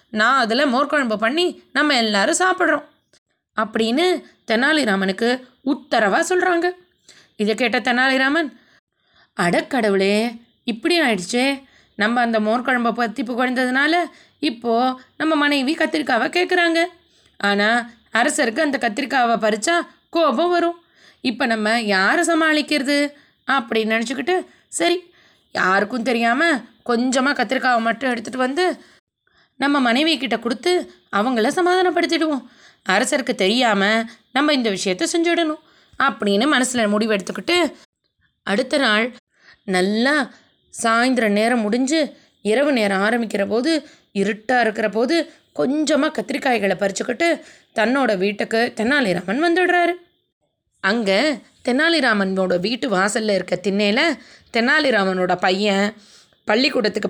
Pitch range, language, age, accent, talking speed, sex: 220-305 Hz, Tamil, 20-39, native, 100 wpm, female